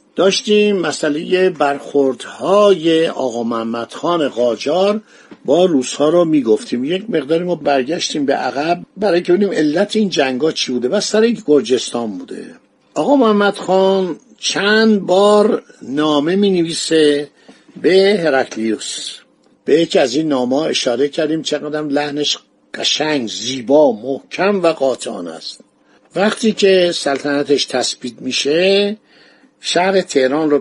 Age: 50-69